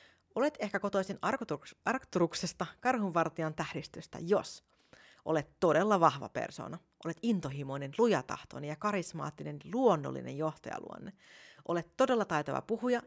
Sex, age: female, 30-49